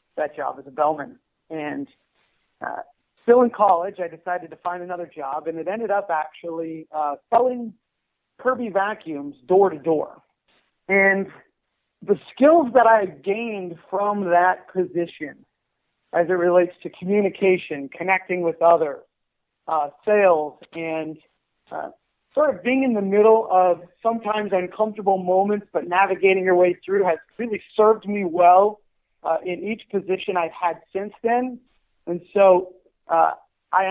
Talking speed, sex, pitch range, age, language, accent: 145 wpm, male, 170-210 Hz, 40-59, English, American